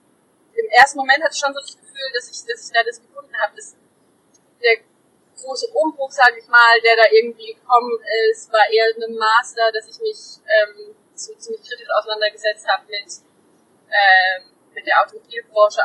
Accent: German